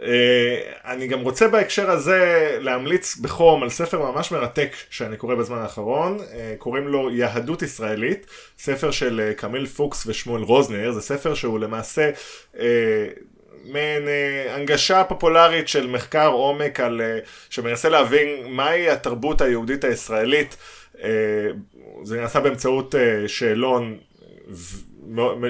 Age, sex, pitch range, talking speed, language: 20-39, male, 120-150 Hz, 125 wpm, Hebrew